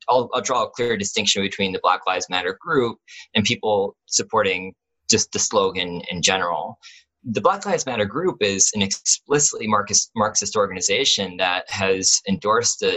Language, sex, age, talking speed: English, male, 20-39, 160 wpm